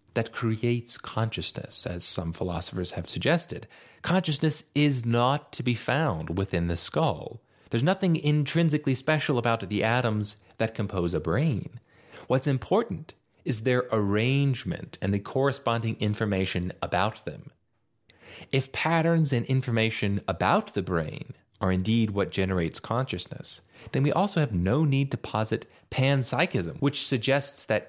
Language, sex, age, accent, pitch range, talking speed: English, male, 30-49, American, 105-150 Hz, 135 wpm